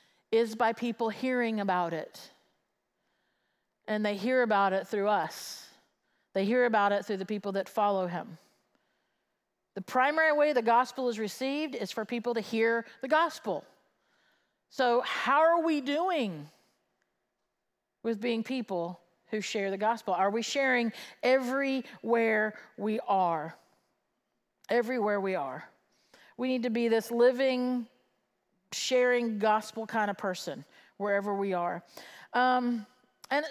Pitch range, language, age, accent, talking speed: 210-255 Hz, English, 50-69, American, 135 wpm